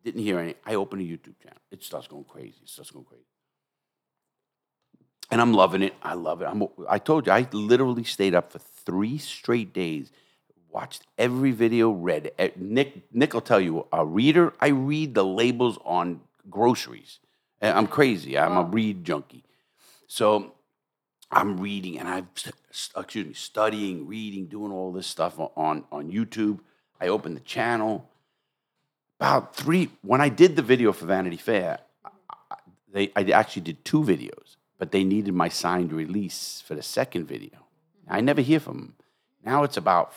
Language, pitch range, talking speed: English, 95-120 Hz, 165 wpm